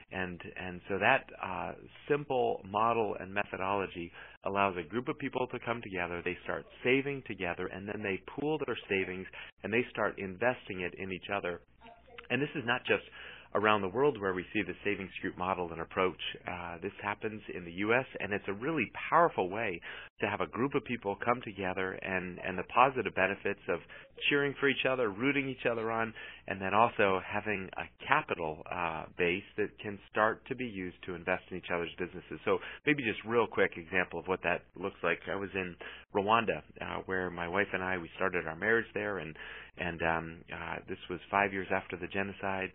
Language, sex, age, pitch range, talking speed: English, male, 40-59, 90-110 Hz, 200 wpm